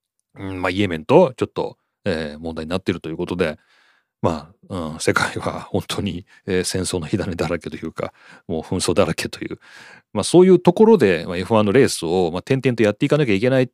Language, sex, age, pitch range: Japanese, male, 40-59, 95-135 Hz